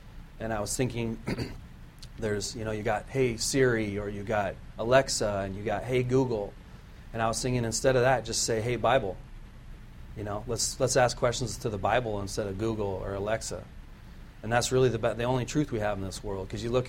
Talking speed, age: 215 wpm, 30-49